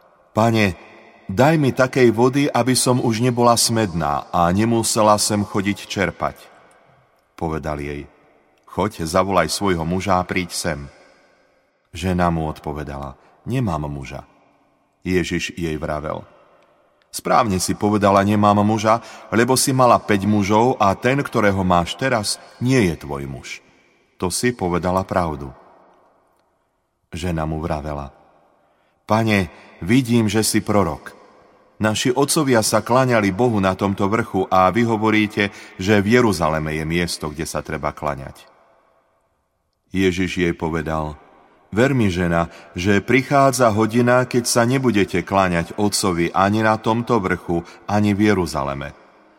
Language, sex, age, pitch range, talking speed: Slovak, male, 40-59, 85-110 Hz, 125 wpm